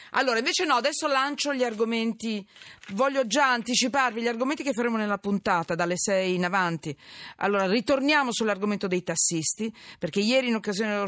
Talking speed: 160 wpm